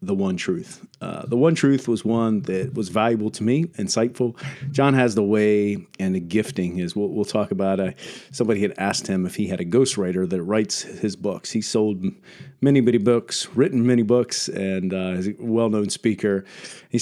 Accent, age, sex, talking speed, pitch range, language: American, 40-59, male, 195 wpm, 95-125 Hz, English